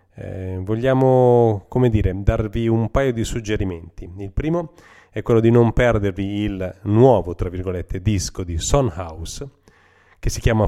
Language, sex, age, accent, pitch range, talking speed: Italian, male, 30-49, native, 90-115 Hz, 145 wpm